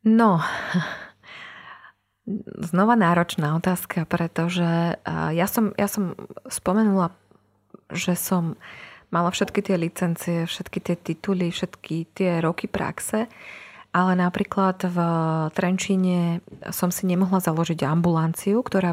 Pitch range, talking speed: 170-200 Hz, 105 wpm